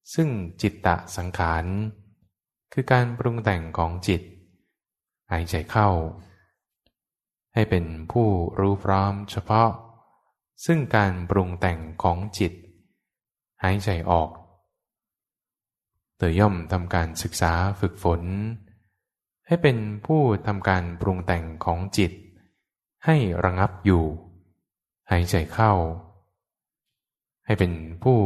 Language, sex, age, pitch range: English, male, 10-29, 90-105 Hz